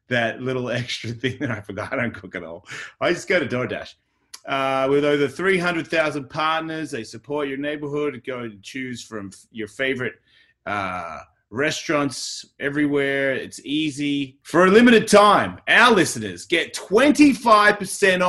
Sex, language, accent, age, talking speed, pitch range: male, English, Australian, 30-49, 150 wpm, 125-170 Hz